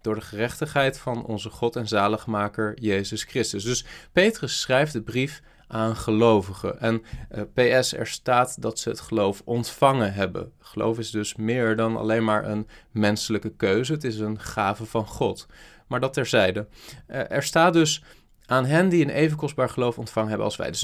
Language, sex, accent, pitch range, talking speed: Dutch, male, Dutch, 110-145 Hz, 180 wpm